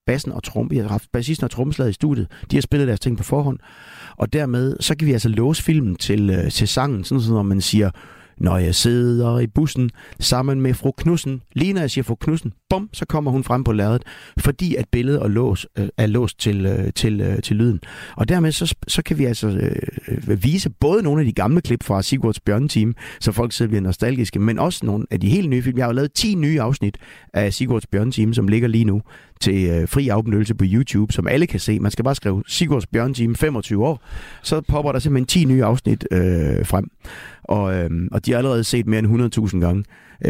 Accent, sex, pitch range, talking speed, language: native, male, 100-135 Hz, 215 wpm, Danish